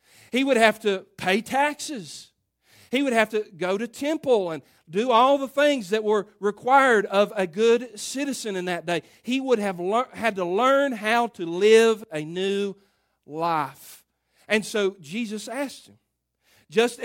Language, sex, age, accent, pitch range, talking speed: English, male, 40-59, American, 195-245 Hz, 160 wpm